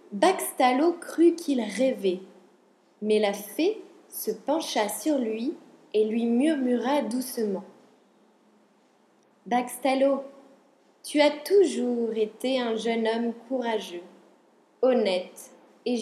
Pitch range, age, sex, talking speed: 220-325 Hz, 20-39, female, 95 wpm